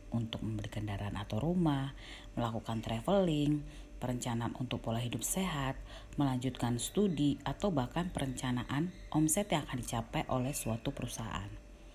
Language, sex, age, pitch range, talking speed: Indonesian, female, 30-49, 115-155 Hz, 120 wpm